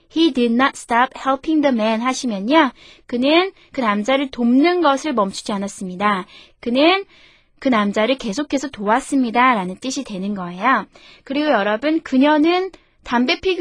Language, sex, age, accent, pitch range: Korean, female, 20-39, native, 220-310 Hz